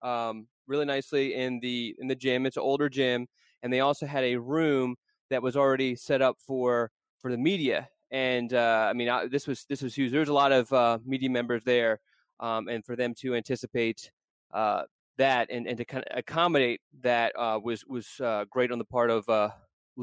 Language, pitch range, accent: English, 120-145 Hz, American